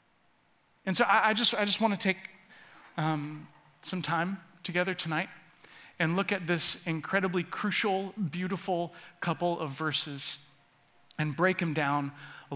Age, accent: 40-59, American